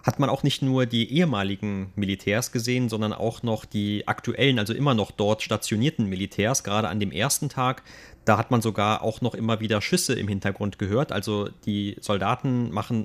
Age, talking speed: 30-49, 190 wpm